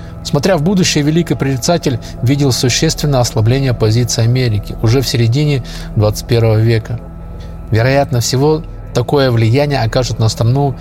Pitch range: 115-150 Hz